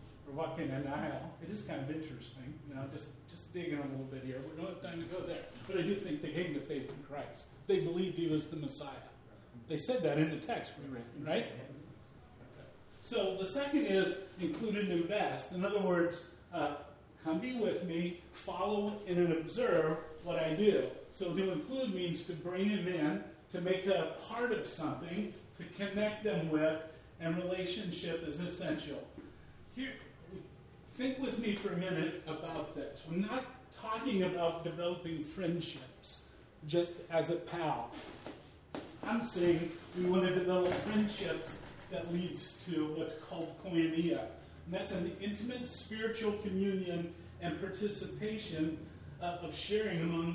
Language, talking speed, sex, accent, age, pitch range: English, 165 wpm, male, American, 40-59, 155-190 Hz